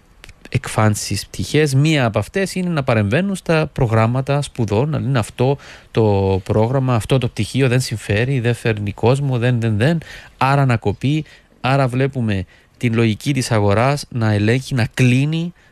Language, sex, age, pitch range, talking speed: Greek, male, 30-49, 105-135 Hz, 150 wpm